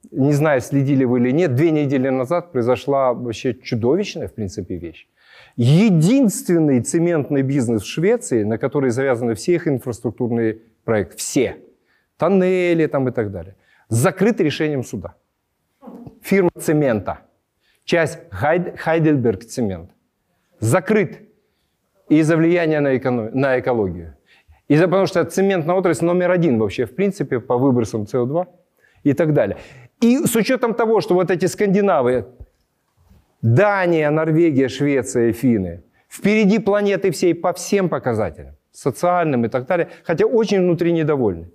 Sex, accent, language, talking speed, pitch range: male, native, Ukrainian, 130 wpm, 120-175 Hz